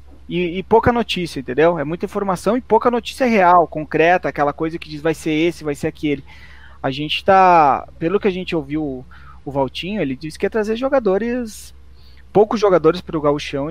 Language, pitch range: Portuguese, 150-190 Hz